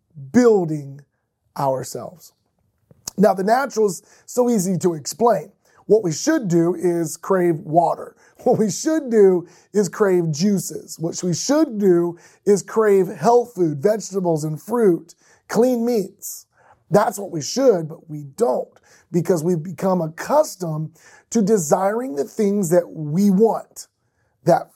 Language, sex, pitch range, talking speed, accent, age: English, male, 175-235 Hz, 135 wpm, American, 30-49